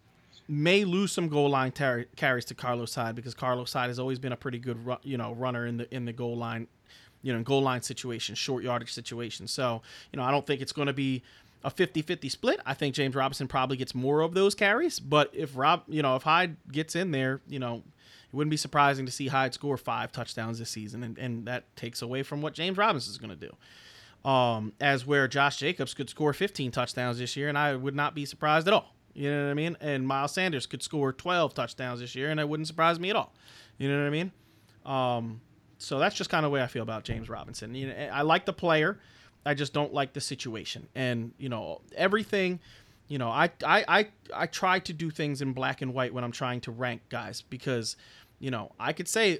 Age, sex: 30-49, male